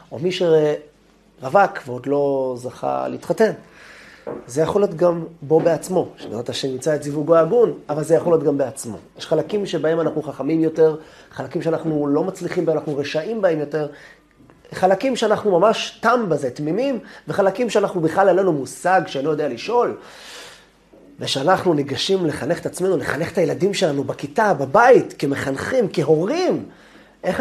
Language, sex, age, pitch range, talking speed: Hebrew, male, 30-49, 145-185 Hz, 155 wpm